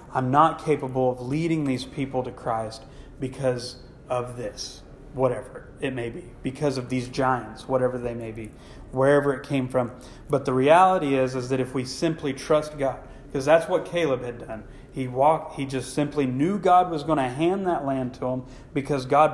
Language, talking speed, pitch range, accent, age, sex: English, 190 wpm, 125-145 Hz, American, 30-49, male